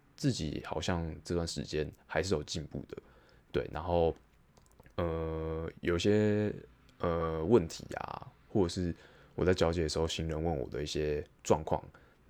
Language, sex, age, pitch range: Chinese, male, 20-39, 80-95 Hz